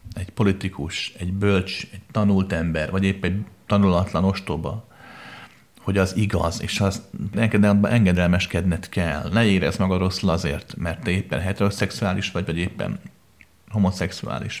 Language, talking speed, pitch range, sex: Hungarian, 125 wpm, 95-110 Hz, male